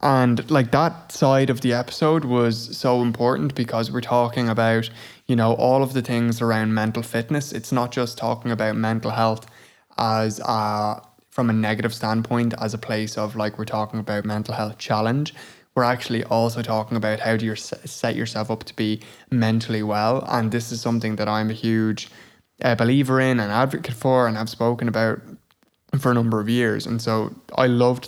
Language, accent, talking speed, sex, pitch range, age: English, Irish, 190 wpm, male, 110-120 Hz, 20-39